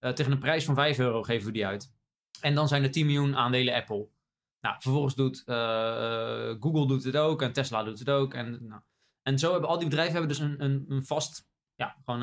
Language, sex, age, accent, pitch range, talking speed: Dutch, male, 20-39, Dutch, 120-150 Hz, 235 wpm